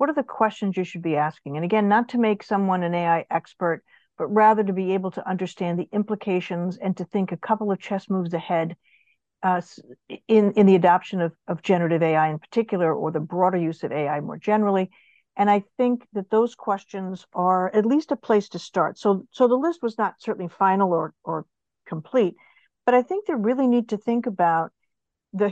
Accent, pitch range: American, 175-215 Hz